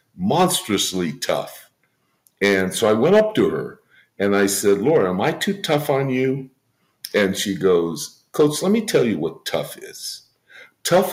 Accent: American